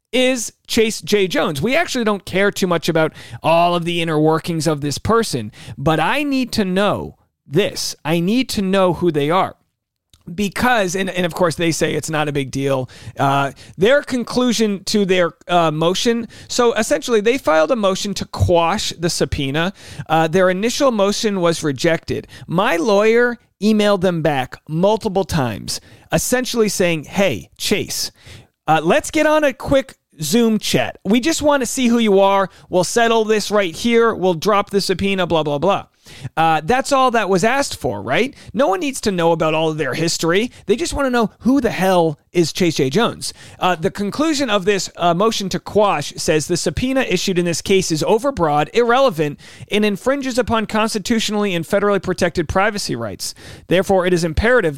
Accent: American